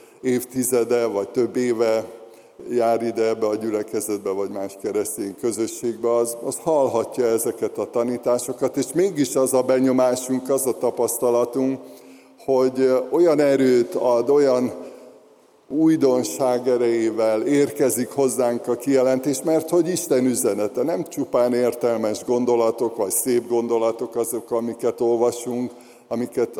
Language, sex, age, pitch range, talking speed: Hungarian, male, 50-69, 115-130 Hz, 120 wpm